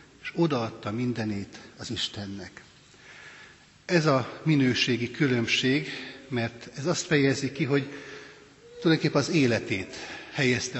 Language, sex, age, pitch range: Hungarian, male, 60-79, 120-145 Hz